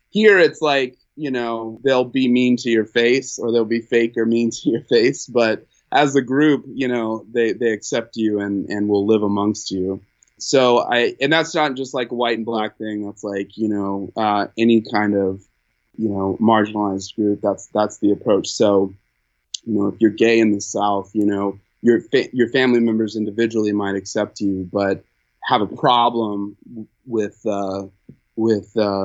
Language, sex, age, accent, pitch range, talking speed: English, male, 20-39, American, 100-120 Hz, 190 wpm